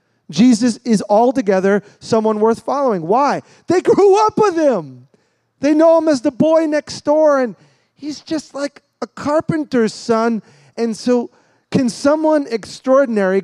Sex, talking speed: male, 145 wpm